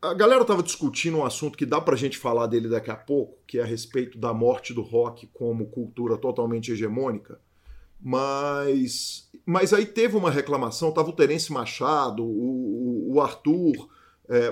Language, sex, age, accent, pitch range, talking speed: Portuguese, male, 40-59, Brazilian, 120-190 Hz, 175 wpm